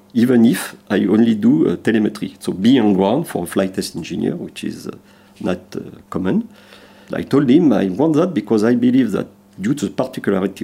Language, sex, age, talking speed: English, male, 50-69, 205 wpm